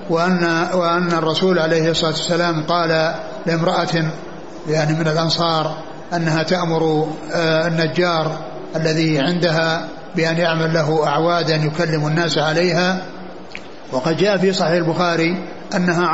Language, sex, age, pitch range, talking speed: Arabic, male, 60-79, 160-180 Hz, 110 wpm